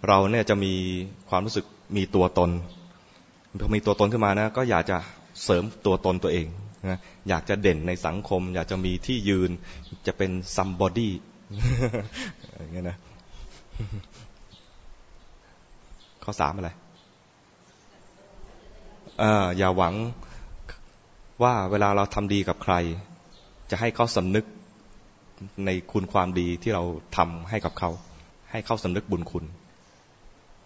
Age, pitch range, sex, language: 20-39, 90-105 Hz, male, English